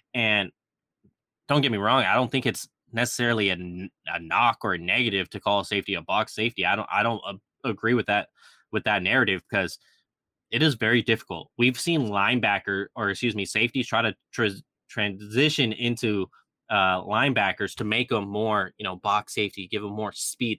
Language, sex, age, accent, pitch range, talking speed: English, male, 20-39, American, 100-125 Hz, 185 wpm